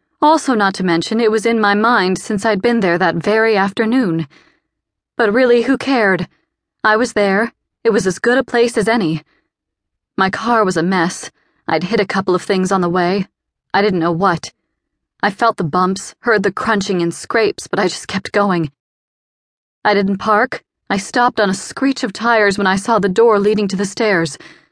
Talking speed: 200 wpm